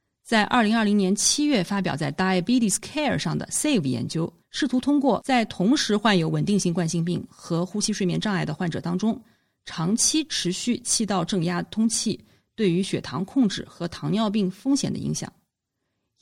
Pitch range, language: 170-230 Hz, Chinese